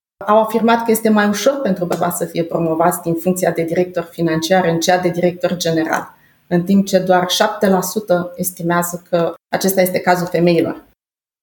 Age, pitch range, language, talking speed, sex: 30-49, 180-230 Hz, Romanian, 170 wpm, female